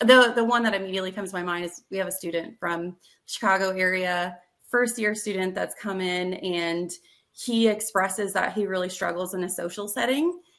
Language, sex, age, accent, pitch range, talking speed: English, female, 30-49, American, 185-220 Hz, 195 wpm